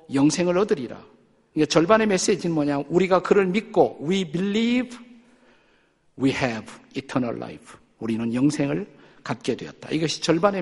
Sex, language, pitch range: male, Korean, 155-195 Hz